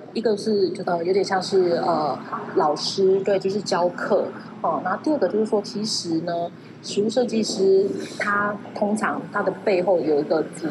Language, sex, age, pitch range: Chinese, female, 20-39, 175-220 Hz